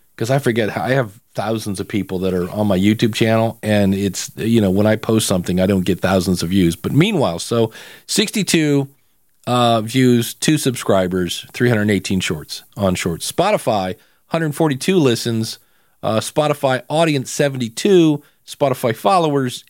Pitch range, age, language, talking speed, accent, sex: 105-140 Hz, 40-59, English, 150 wpm, American, male